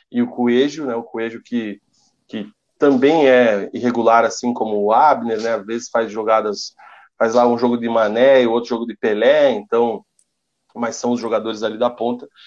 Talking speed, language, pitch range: 190 wpm, Portuguese, 120-145 Hz